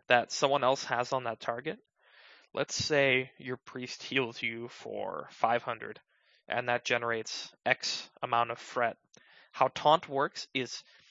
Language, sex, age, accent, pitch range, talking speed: English, male, 20-39, American, 125-150 Hz, 140 wpm